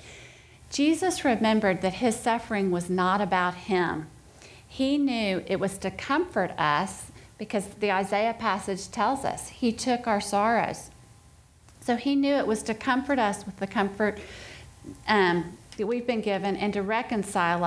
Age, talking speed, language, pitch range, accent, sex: 40-59, 155 wpm, English, 180-220 Hz, American, female